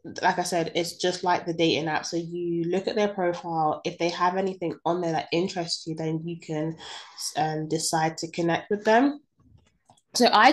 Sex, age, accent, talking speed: female, 20-39, British, 200 wpm